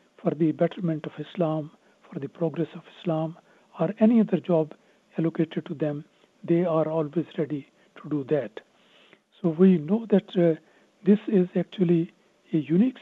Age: 60-79